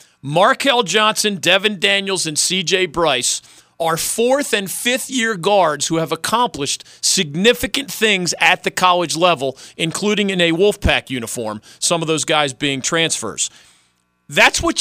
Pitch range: 145-210 Hz